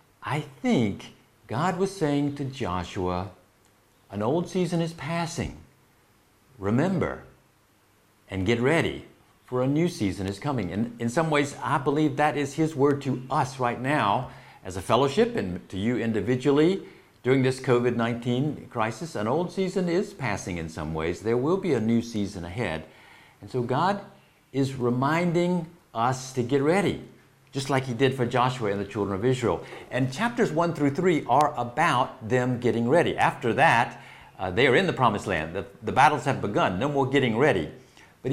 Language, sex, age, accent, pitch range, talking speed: English, male, 50-69, American, 110-150 Hz, 175 wpm